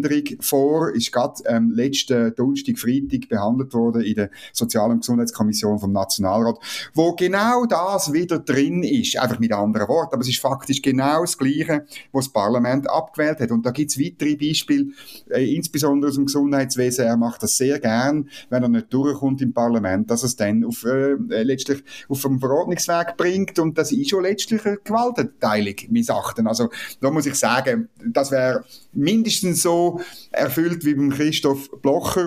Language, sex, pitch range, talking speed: German, male, 120-160 Hz, 170 wpm